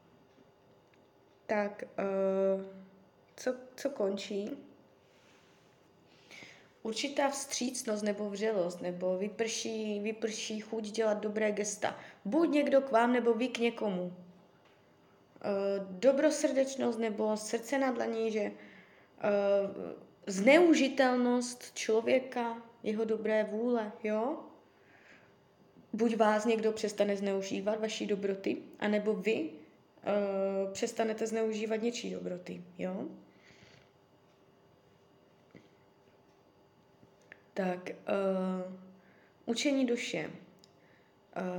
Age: 20-39